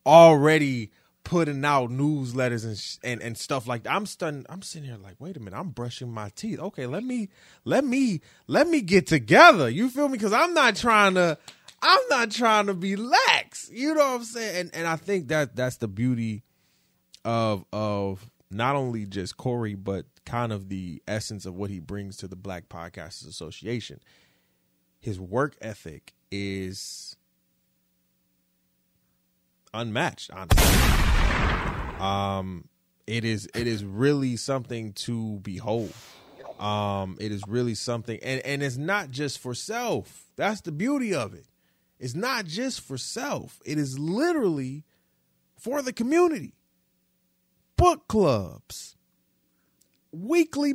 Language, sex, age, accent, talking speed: English, male, 20-39, American, 150 wpm